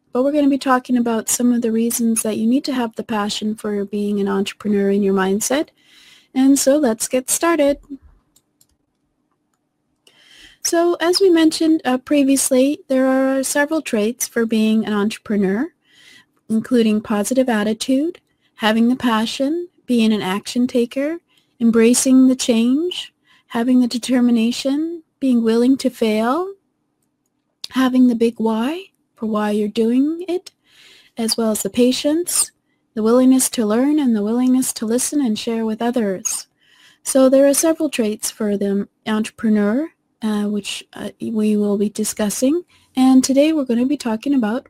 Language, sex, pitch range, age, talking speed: English, female, 225-280 Hz, 30-49, 150 wpm